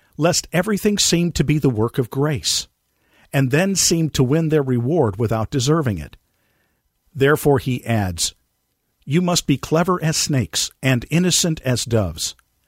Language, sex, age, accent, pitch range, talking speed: English, male, 50-69, American, 120-165 Hz, 150 wpm